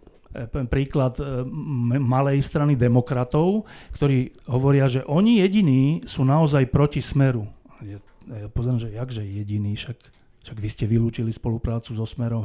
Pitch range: 120-155 Hz